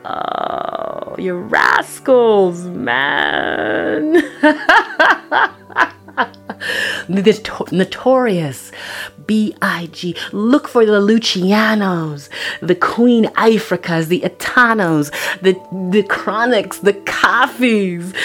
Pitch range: 170-235 Hz